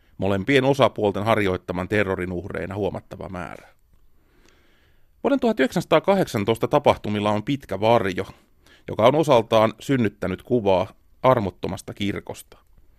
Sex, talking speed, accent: male, 90 wpm, native